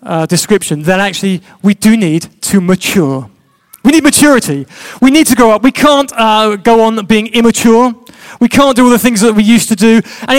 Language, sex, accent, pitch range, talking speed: English, male, British, 205-265 Hz, 210 wpm